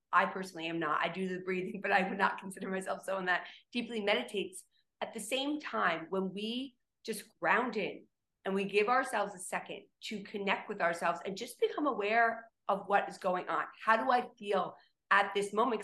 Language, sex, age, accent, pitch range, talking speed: English, female, 40-59, American, 190-235 Hz, 200 wpm